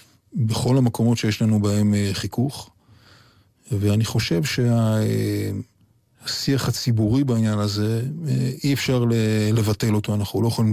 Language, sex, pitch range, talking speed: Hebrew, male, 105-115 Hz, 105 wpm